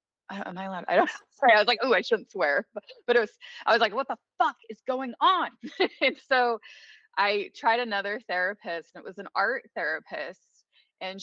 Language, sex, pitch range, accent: English, female, 175-260 Hz, American